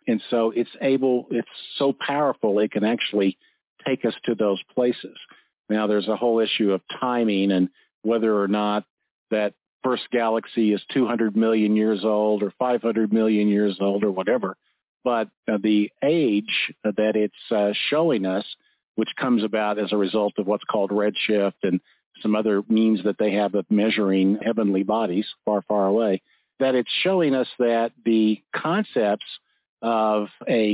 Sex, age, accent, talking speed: male, 50-69, American, 160 wpm